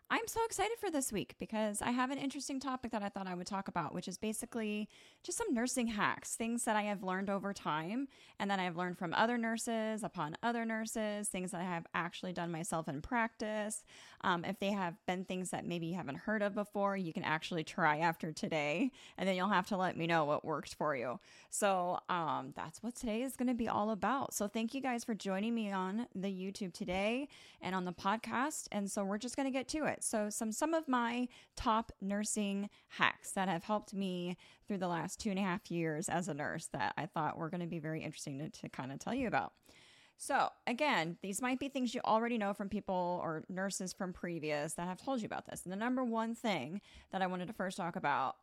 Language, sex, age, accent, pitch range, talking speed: English, female, 10-29, American, 175-225 Hz, 235 wpm